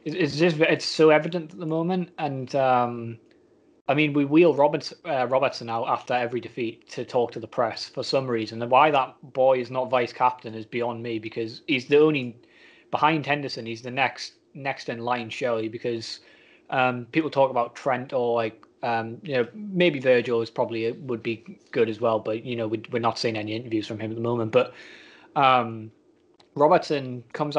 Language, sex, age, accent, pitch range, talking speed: English, male, 20-39, British, 120-150 Hz, 200 wpm